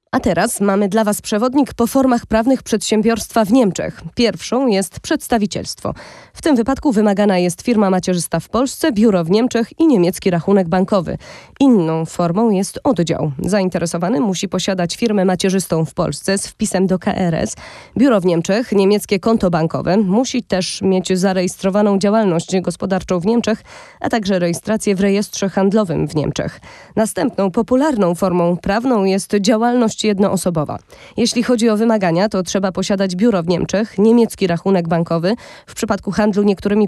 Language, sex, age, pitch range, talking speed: Polish, female, 20-39, 185-230 Hz, 150 wpm